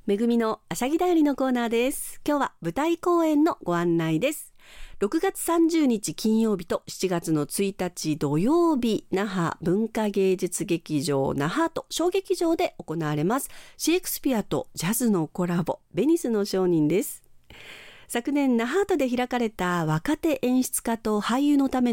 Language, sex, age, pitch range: Japanese, female, 50-69, 180-295 Hz